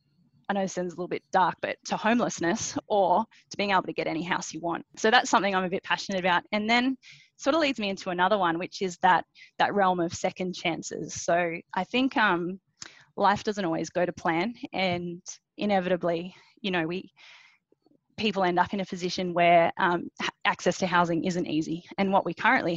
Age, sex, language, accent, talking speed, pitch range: 10-29, female, English, Australian, 205 wpm, 170-200 Hz